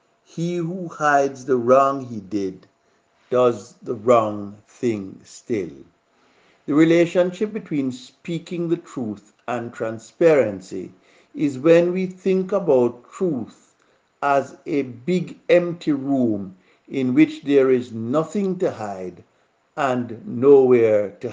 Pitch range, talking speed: 125-170 Hz, 115 wpm